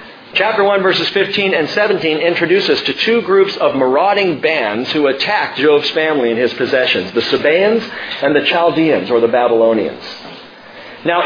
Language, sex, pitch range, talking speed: English, male, 145-195 Hz, 155 wpm